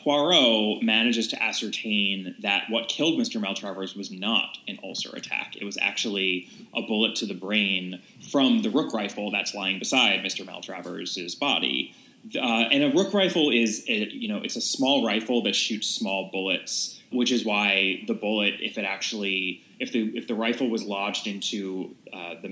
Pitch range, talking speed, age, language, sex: 95-130 Hz, 175 wpm, 20-39, English, male